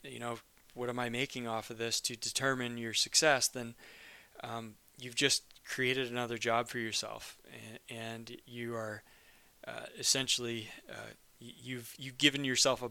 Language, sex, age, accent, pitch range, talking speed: English, male, 20-39, American, 115-130 Hz, 160 wpm